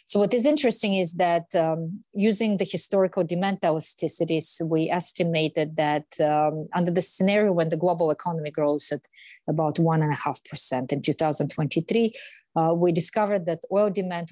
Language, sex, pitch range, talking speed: English, female, 155-180 Hz, 165 wpm